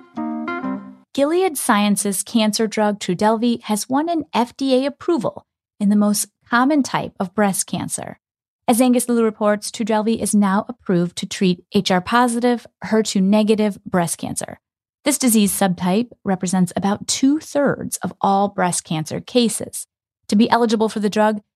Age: 30-49